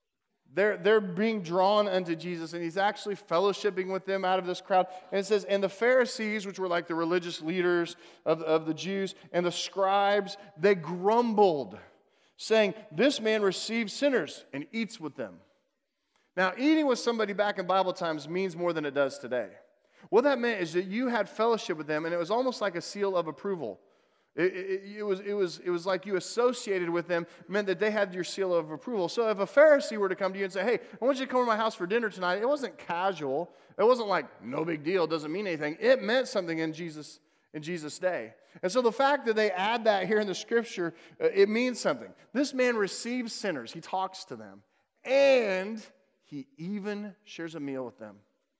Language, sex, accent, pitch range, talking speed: English, male, American, 175-220 Hz, 215 wpm